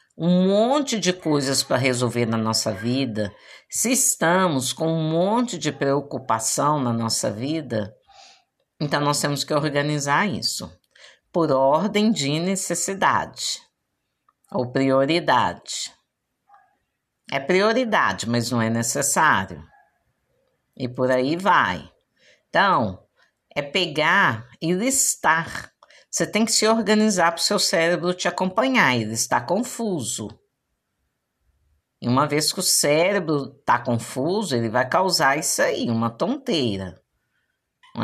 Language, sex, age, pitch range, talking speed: Portuguese, female, 50-69, 125-180 Hz, 120 wpm